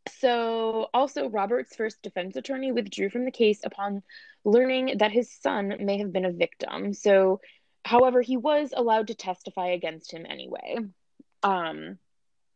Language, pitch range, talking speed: English, 185-240 Hz, 150 wpm